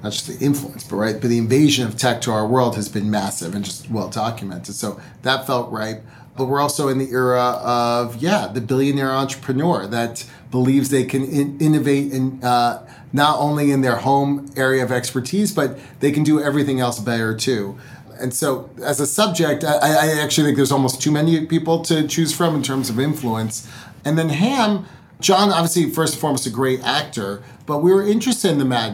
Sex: male